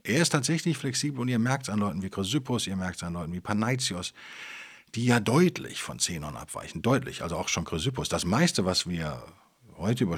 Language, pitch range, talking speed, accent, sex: German, 95-140 Hz, 210 wpm, German, male